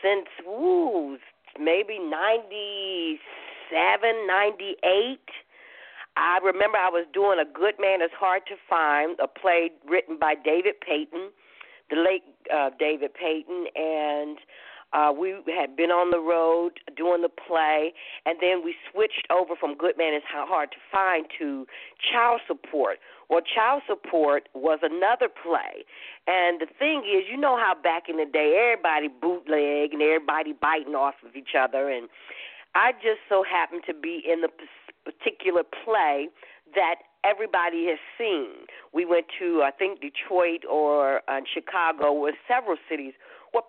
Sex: female